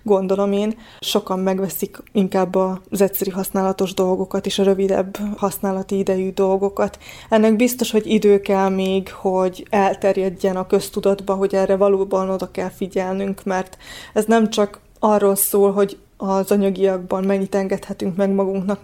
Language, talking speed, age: Hungarian, 140 wpm, 20-39